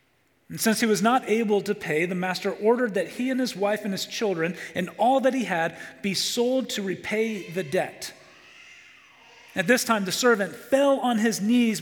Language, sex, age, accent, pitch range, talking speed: English, male, 40-59, American, 145-215 Hz, 200 wpm